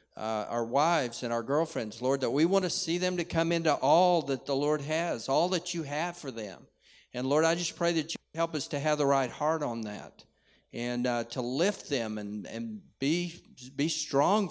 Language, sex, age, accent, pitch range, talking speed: English, male, 50-69, American, 125-165 Hz, 220 wpm